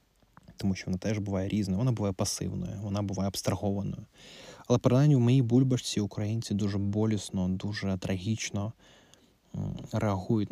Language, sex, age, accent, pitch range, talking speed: Ukrainian, male, 20-39, native, 100-115 Hz, 130 wpm